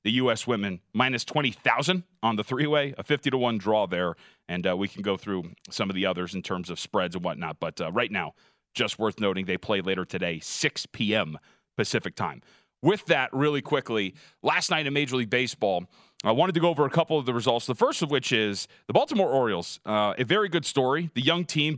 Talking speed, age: 220 wpm, 30-49